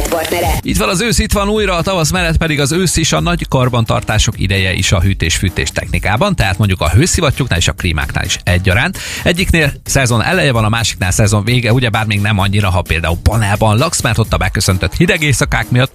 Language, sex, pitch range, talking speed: Hungarian, male, 90-130 Hz, 205 wpm